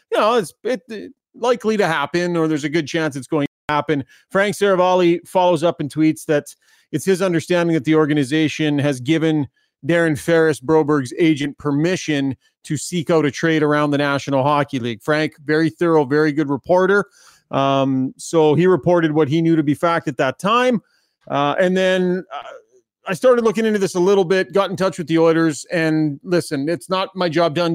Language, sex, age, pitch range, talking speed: English, male, 30-49, 145-180 Hz, 190 wpm